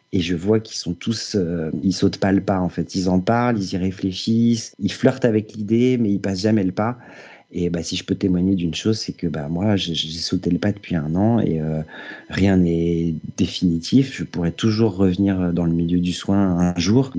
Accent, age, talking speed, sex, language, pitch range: French, 40-59, 230 wpm, male, French, 90-110 Hz